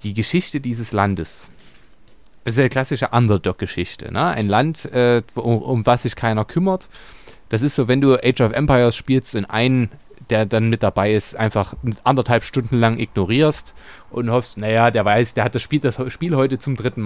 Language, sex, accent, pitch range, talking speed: German, male, German, 110-130 Hz, 190 wpm